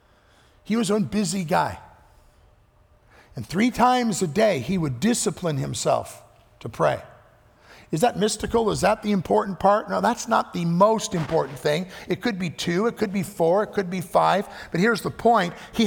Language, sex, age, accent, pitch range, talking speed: English, male, 50-69, American, 150-215 Hz, 180 wpm